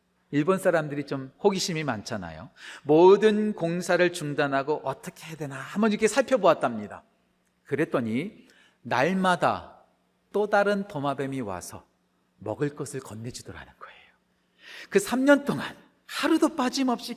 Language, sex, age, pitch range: Korean, male, 40-59, 185-275 Hz